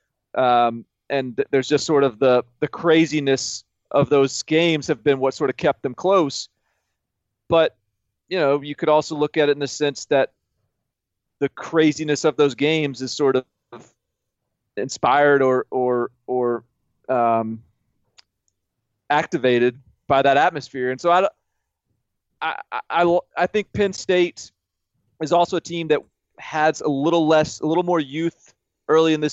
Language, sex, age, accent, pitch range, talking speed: English, male, 30-49, American, 120-150 Hz, 155 wpm